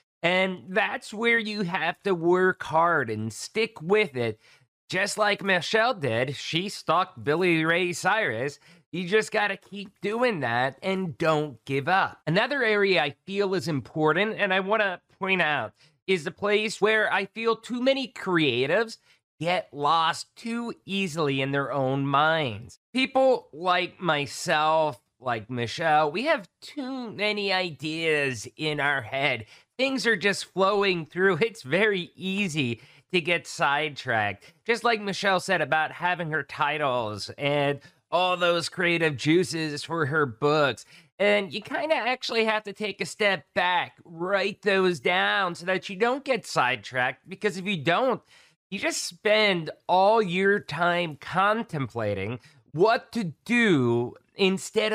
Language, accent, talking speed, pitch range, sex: English, American, 145 wpm, 150-205 Hz, male